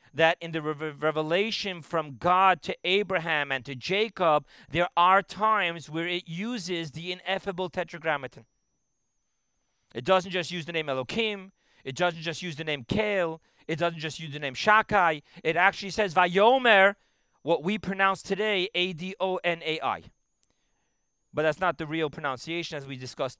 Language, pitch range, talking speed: English, 160-210 Hz, 150 wpm